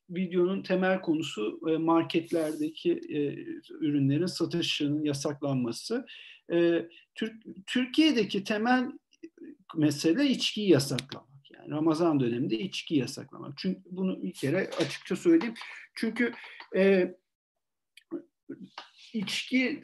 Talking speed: 75 wpm